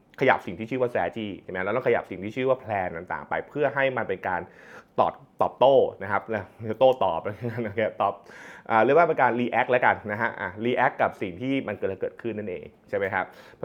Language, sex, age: Thai, male, 20-39